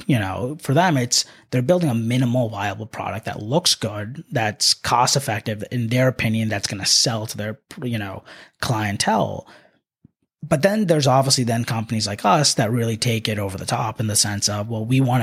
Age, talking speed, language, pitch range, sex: 30-49, 200 wpm, English, 105-130 Hz, male